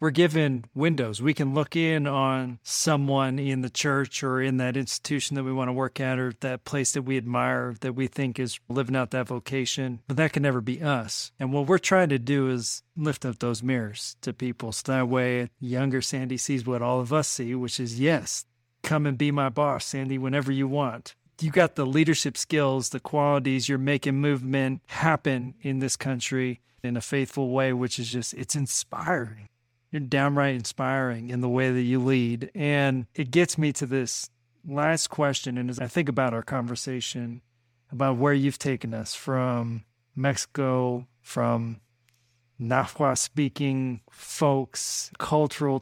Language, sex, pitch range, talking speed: English, male, 125-145 Hz, 180 wpm